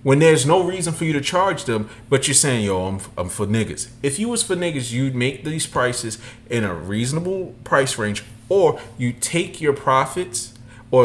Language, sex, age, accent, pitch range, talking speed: English, male, 40-59, American, 110-145 Hz, 200 wpm